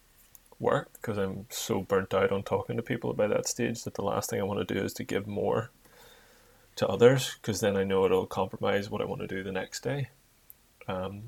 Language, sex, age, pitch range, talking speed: English, male, 20-39, 95-110 Hz, 225 wpm